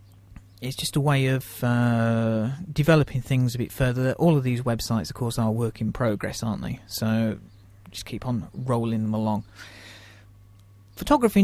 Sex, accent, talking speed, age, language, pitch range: male, British, 165 wpm, 40-59, English, 105-155 Hz